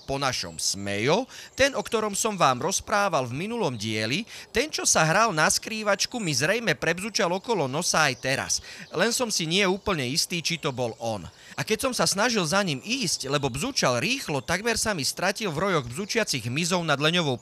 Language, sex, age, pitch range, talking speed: Slovak, male, 30-49, 125-195 Hz, 195 wpm